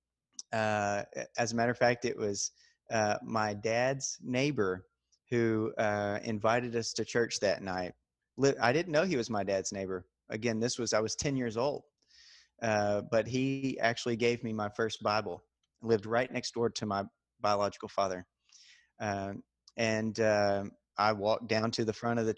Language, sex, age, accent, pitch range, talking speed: English, male, 30-49, American, 105-120 Hz, 175 wpm